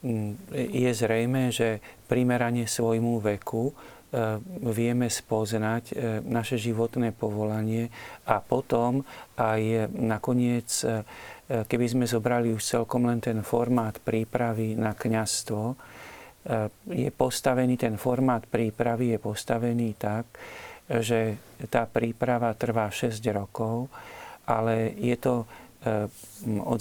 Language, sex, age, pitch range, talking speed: Slovak, male, 40-59, 110-125 Hz, 100 wpm